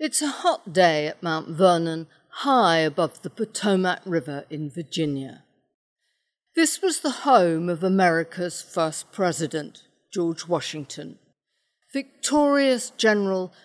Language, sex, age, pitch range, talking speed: English, female, 50-69, 165-245 Hz, 115 wpm